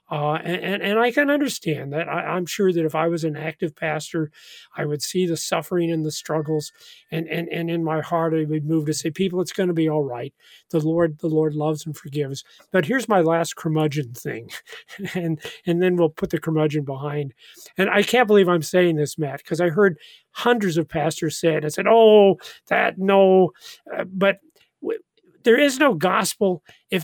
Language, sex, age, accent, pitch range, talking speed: English, male, 40-59, American, 155-205 Hz, 205 wpm